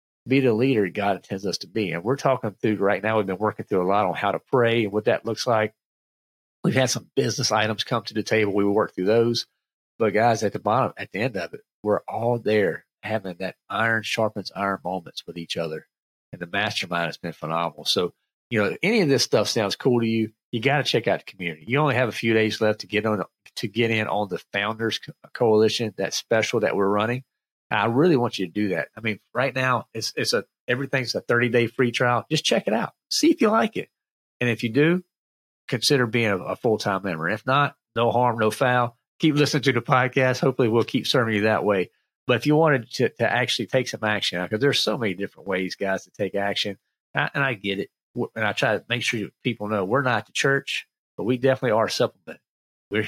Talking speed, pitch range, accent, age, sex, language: 235 wpm, 105-130 Hz, American, 40-59, male, English